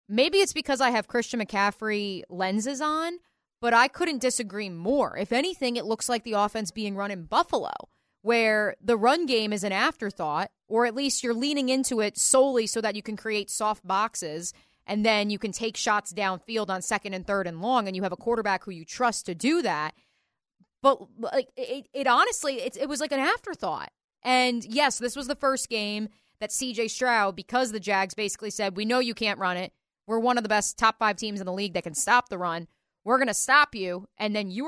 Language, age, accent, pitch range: English, 20-39, American, 195-250 Hz